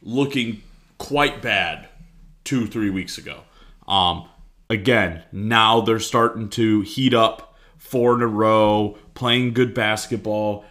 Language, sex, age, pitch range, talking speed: English, male, 30-49, 110-135 Hz, 130 wpm